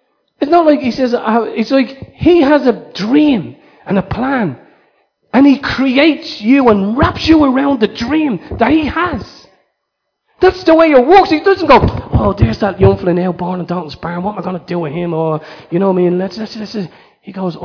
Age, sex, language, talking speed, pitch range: 30-49, male, English, 225 wpm, 185-275 Hz